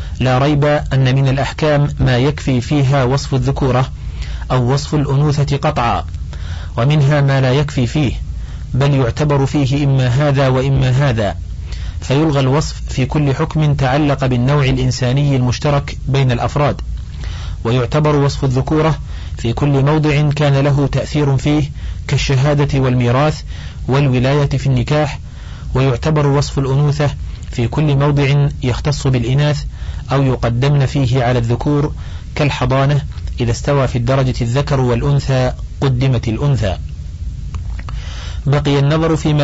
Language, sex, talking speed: Arabic, male, 115 wpm